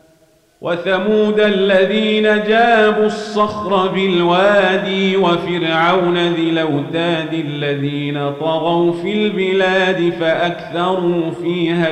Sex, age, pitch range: male, 40-59, 170-215 Hz